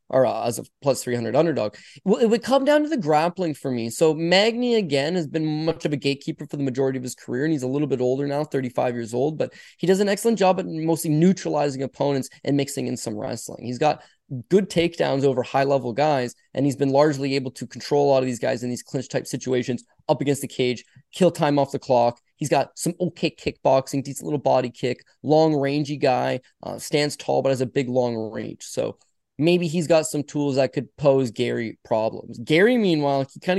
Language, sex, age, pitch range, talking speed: English, male, 20-39, 130-165 Hz, 225 wpm